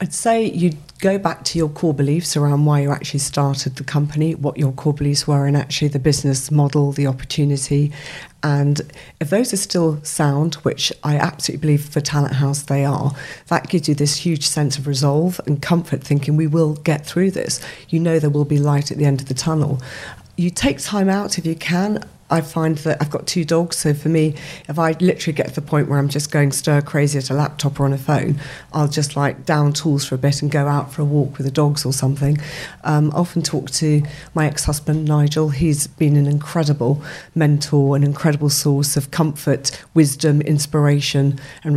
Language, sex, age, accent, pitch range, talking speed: English, female, 40-59, British, 145-160 Hz, 215 wpm